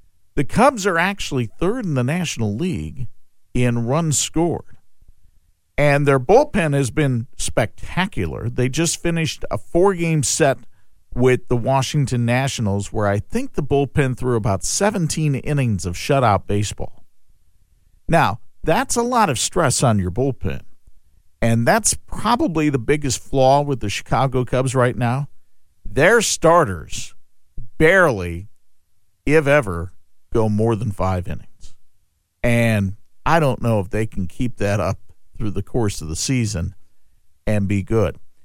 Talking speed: 140 wpm